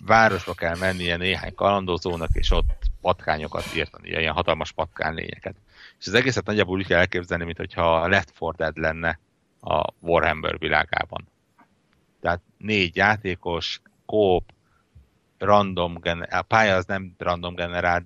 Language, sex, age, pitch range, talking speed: Hungarian, male, 60-79, 85-95 Hz, 130 wpm